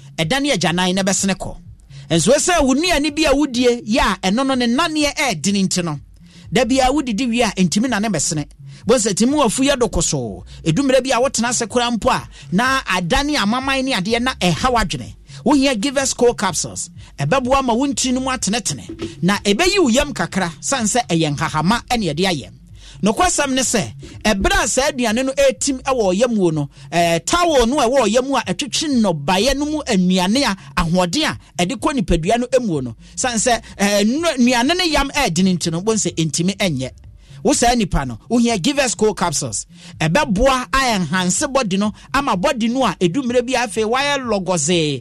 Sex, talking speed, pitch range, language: male, 160 wpm, 175-265 Hz, English